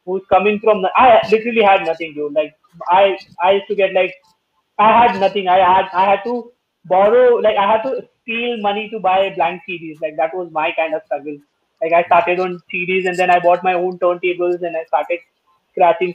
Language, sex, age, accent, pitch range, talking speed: English, male, 20-39, Indian, 175-215 Hz, 210 wpm